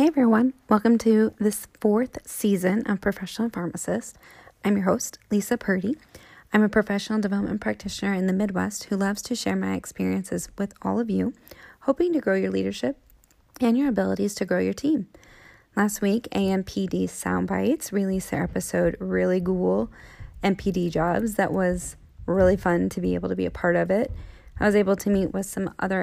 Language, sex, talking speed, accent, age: English, female, 180 wpm, American, 20-39